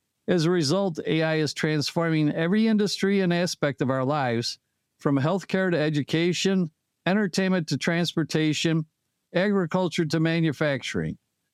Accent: American